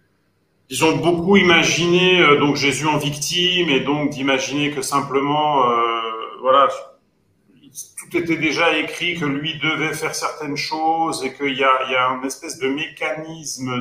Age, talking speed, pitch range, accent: 40-59, 160 wpm, 135-175 Hz, French